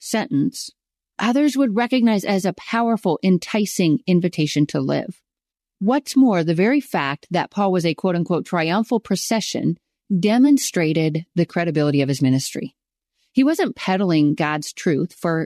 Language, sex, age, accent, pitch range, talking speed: English, female, 40-59, American, 165-225 Hz, 140 wpm